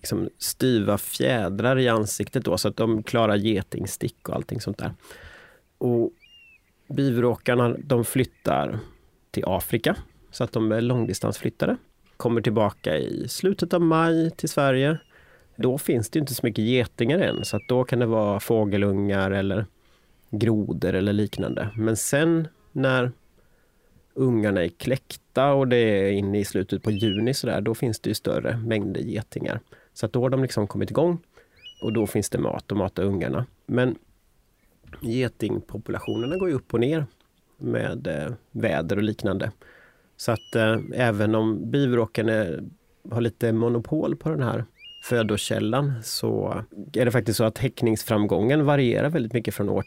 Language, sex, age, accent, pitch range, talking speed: Swedish, male, 30-49, native, 105-125 Hz, 155 wpm